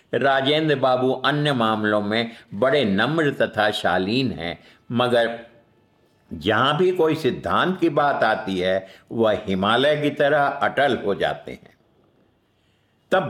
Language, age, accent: Hindi, 60-79, native